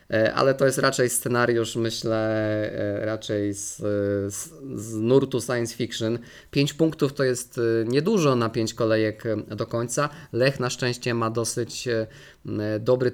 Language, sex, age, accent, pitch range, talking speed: Polish, male, 20-39, native, 110-130 Hz, 130 wpm